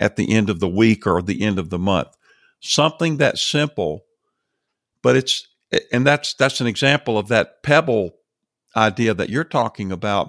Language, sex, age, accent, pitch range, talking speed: English, male, 50-69, American, 100-125 Hz, 175 wpm